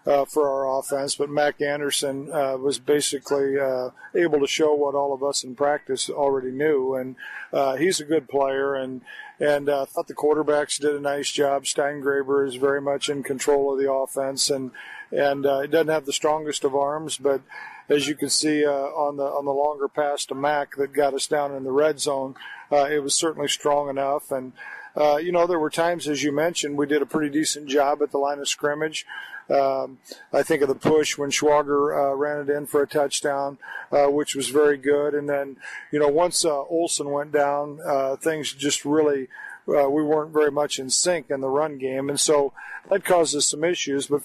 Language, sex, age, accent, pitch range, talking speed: English, male, 50-69, American, 140-150 Hz, 215 wpm